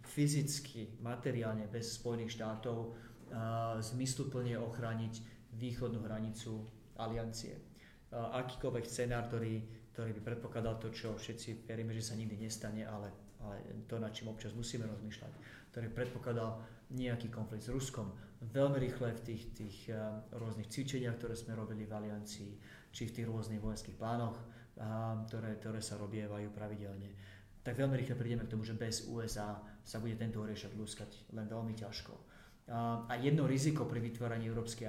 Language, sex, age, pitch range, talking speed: Slovak, male, 30-49, 110-120 Hz, 150 wpm